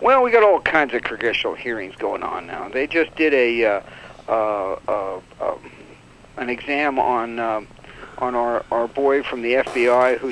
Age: 60-79